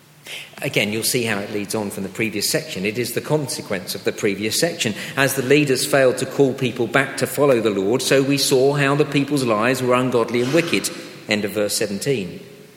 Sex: male